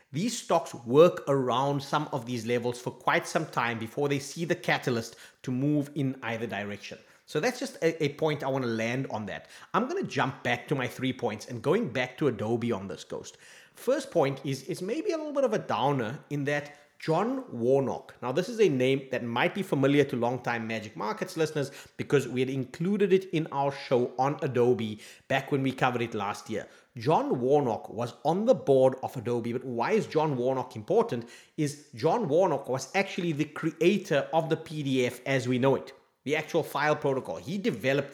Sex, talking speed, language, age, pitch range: male, 205 wpm, English, 30-49, 125-160 Hz